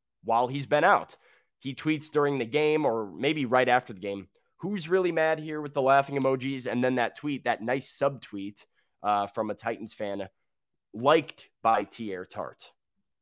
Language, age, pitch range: English, 20-39, 115-145 Hz